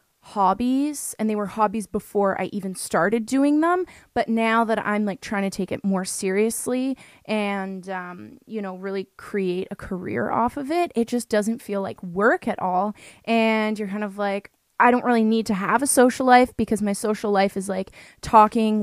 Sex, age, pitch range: female, 20-39, 195-230 Hz